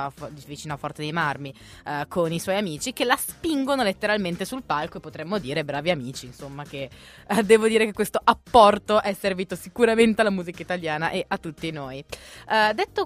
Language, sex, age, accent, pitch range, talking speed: Italian, female, 20-39, native, 155-210 Hz, 175 wpm